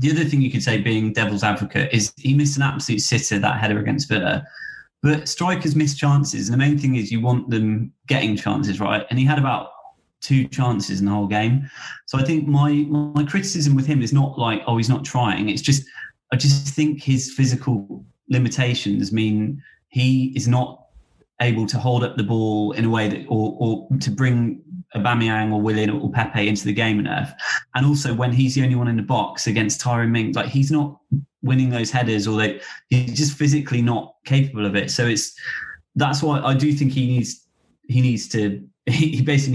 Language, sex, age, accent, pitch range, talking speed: English, male, 20-39, British, 110-140 Hz, 210 wpm